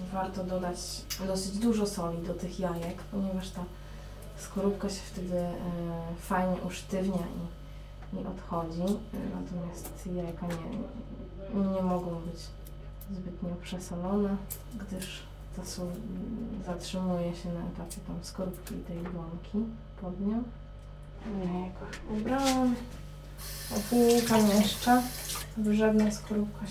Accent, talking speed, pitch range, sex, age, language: native, 110 wpm, 180-210 Hz, female, 20-39, Polish